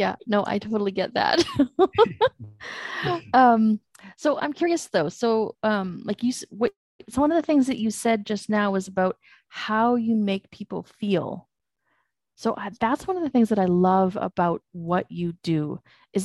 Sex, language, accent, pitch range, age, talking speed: female, English, American, 180-220 Hz, 30-49, 170 wpm